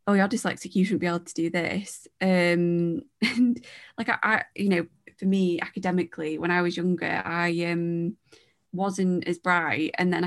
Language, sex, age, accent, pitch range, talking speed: English, female, 20-39, British, 175-195 Hz, 180 wpm